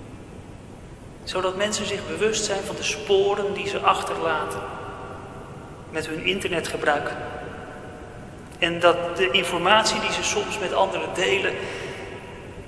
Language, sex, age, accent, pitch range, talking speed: Dutch, male, 40-59, Dutch, 185-220 Hz, 115 wpm